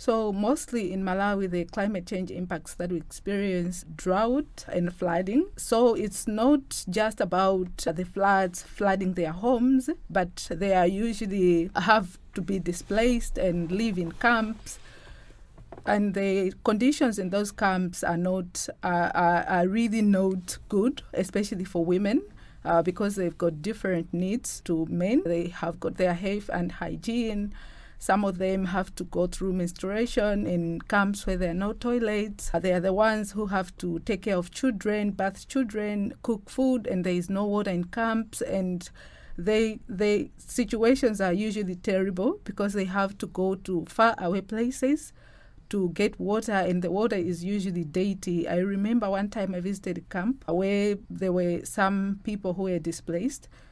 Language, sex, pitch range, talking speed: English, female, 180-215 Hz, 160 wpm